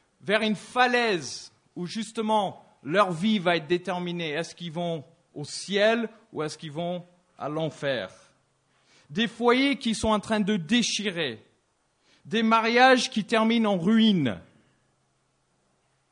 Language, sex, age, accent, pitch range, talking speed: English, male, 40-59, French, 135-215 Hz, 130 wpm